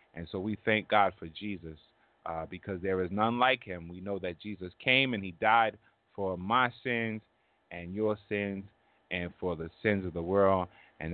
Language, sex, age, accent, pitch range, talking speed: English, male, 30-49, American, 90-115 Hz, 195 wpm